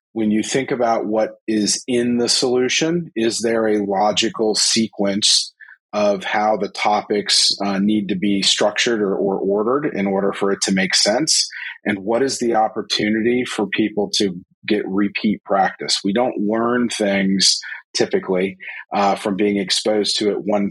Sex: male